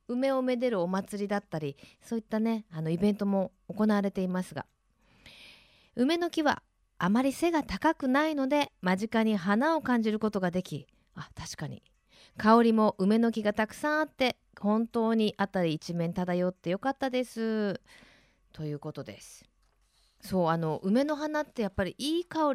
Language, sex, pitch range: Japanese, female, 180-265 Hz